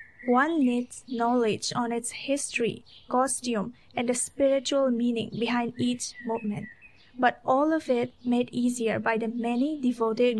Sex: female